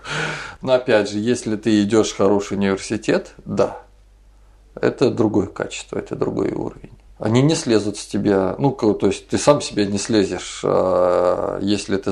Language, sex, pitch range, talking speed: Russian, male, 100-120 Hz, 155 wpm